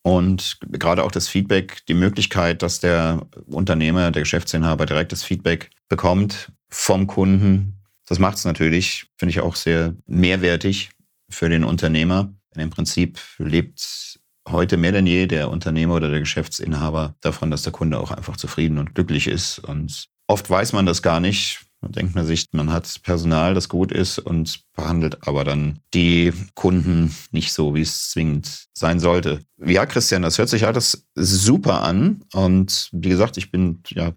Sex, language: male, German